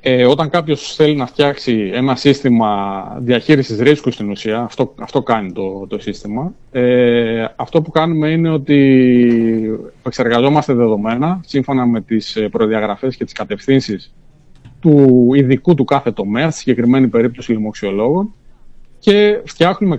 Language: Greek